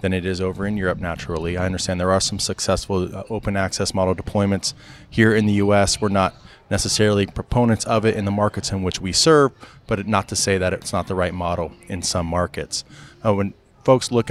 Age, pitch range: 20-39, 95-120 Hz